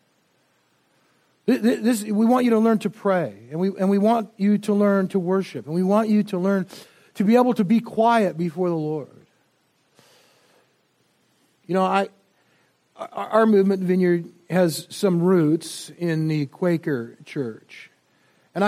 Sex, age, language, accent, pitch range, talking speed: male, 50-69, English, American, 180-225 Hz, 155 wpm